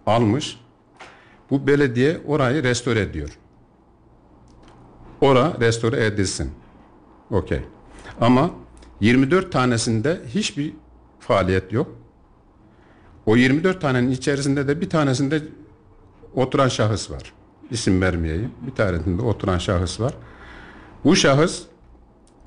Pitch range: 90-130 Hz